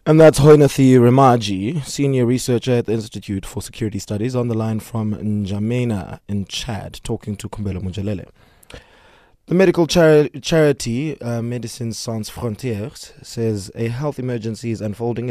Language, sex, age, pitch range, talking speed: English, male, 20-39, 105-130 Hz, 145 wpm